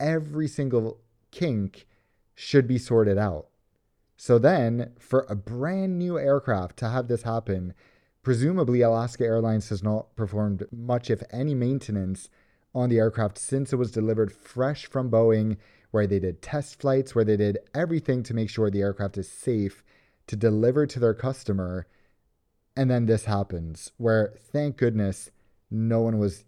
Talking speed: 155 wpm